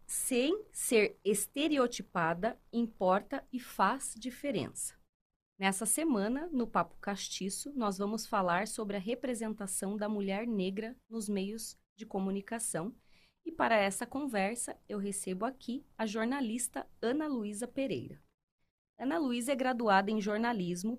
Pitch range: 190-240 Hz